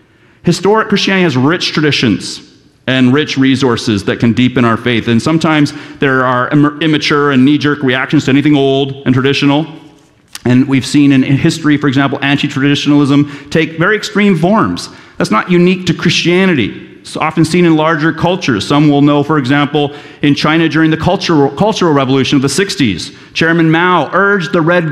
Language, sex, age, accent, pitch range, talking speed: English, male, 40-59, American, 140-175 Hz, 165 wpm